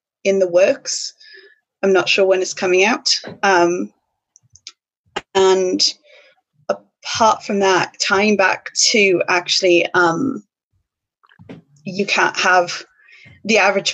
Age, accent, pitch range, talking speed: 20-39, British, 175-205 Hz, 110 wpm